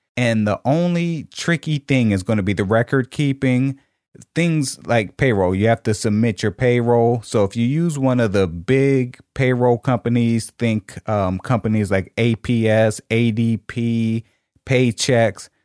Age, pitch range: 30-49, 105-130 Hz